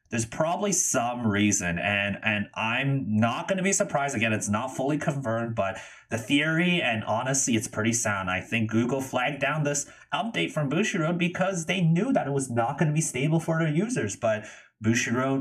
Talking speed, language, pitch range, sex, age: 195 wpm, English, 105-155 Hz, male, 30-49